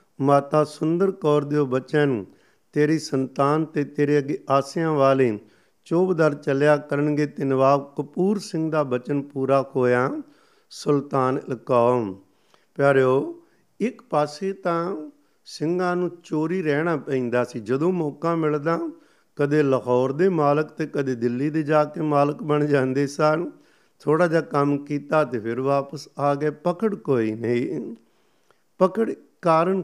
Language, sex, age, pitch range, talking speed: Punjabi, male, 50-69, 135-170 Hz, 120 wpm